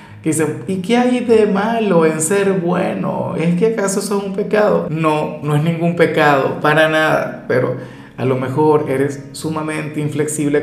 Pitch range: 140-180 Hz